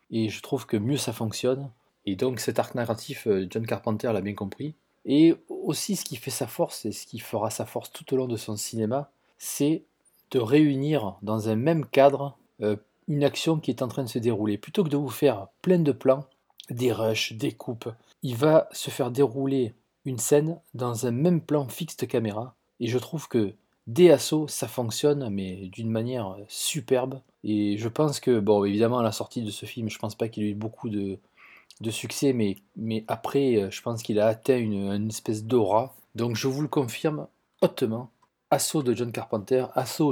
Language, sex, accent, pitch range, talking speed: English, male, French, 110-140 Hz, 205 wpm